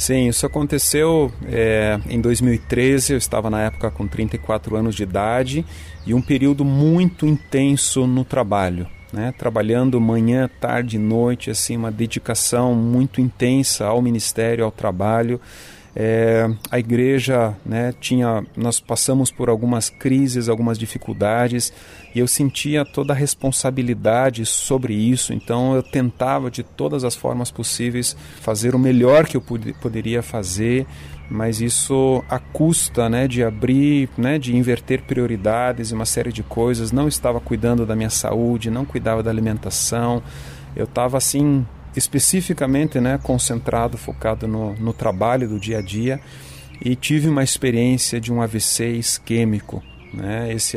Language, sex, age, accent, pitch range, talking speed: Portuguese, male, 40-59, Brazilian, 110-130 Hz, 145 wpm